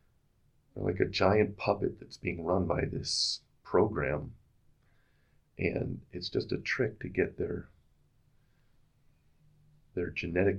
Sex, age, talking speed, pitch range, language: male, 40-59, 115 wpm, 80-115 Hz, English